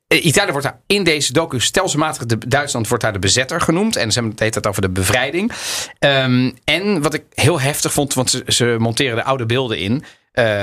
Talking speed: 220 wpm